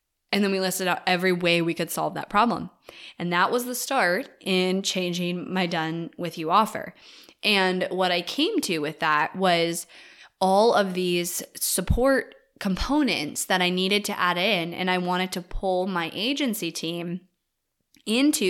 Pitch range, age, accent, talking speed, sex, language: 170-195 Hz, 20-39, American, 170 wpm, female, English